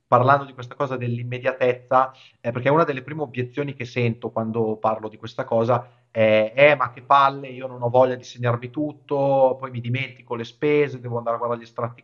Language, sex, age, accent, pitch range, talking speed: Italian, male, 30-49, native, 120-140 Hz, 200 wpm